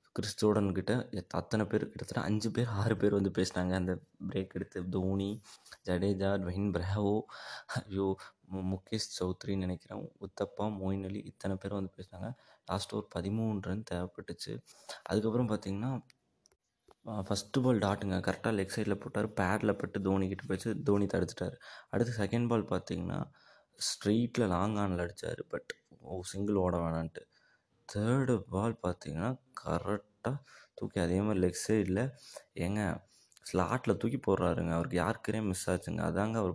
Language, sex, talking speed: Tamil, male, 130 wpm